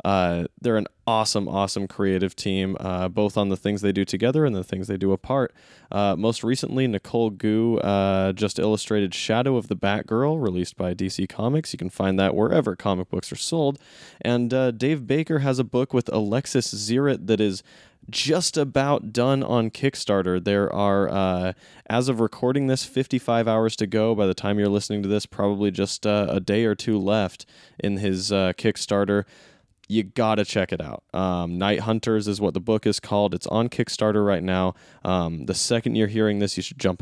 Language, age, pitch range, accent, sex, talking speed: English, 20-39, 95-115 Hz, American, male, 200 wpm